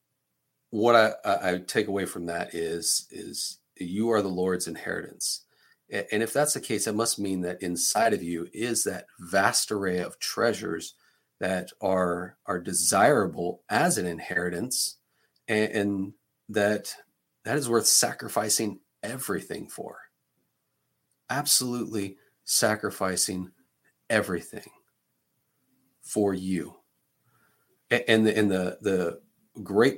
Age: 40-59